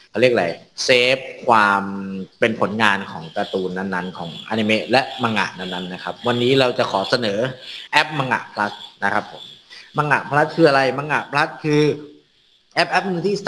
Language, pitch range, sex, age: Thai, 100-140 Hz, male, 30-49